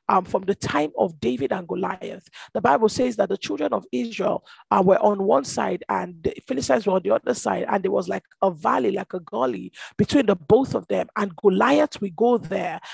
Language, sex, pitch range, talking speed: English, male, 190-240 Hz, 225 wpm